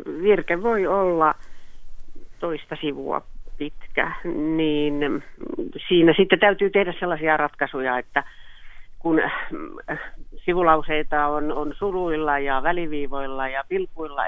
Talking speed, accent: 95 wpm, native